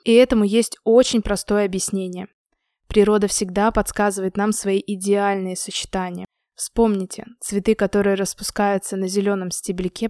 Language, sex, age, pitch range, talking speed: Russian, female, 20-39, 195-215 Hz, 120 wpm